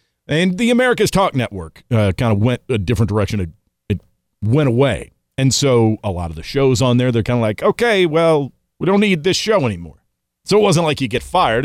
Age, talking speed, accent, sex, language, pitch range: 40-59, 220 wpm, American, male, English, 100-140 Hz